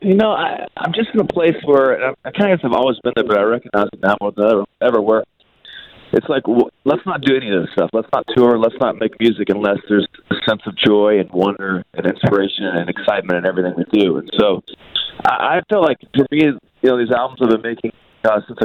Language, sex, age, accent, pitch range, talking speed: English, male, 30-49, American, 110-130 Hz, 250 wpm